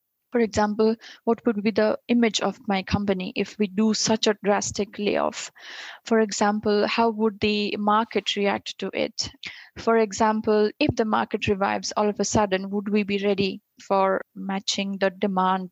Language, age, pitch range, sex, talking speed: English, 20-39, 205-245 Hz, female, 170 wpm